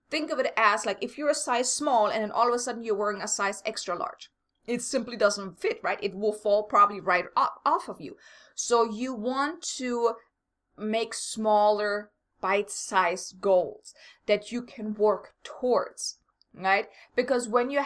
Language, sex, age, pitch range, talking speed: English, female, 20-39, 205-250 Hz, 180 wpm